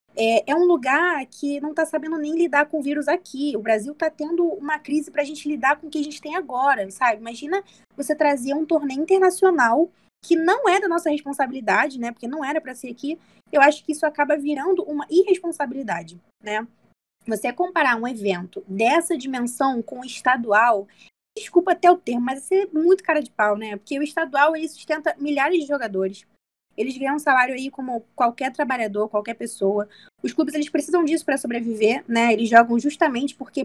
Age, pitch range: 20-39, 230-315 Hz